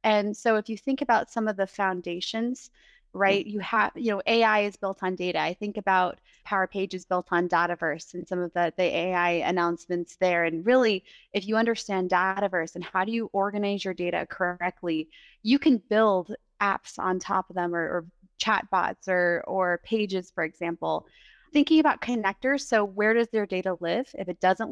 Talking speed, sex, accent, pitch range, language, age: 190 wpm, female, American, 185-220 Hz, English, 20-39